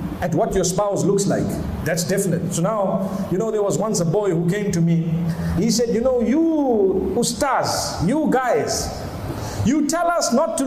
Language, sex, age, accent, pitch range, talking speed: English, male, 50-69, South African, 195-280 Hz, 190 wpm